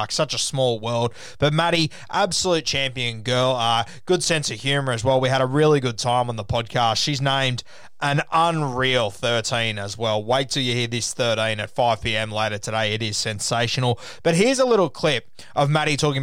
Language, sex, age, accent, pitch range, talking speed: English, male, 20-39, Australian, 115-145 Hz, 195 wpm